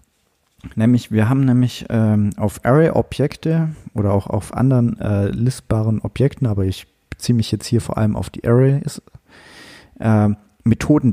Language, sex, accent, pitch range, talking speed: German, male, German, 100-130 Hz, 145 wpm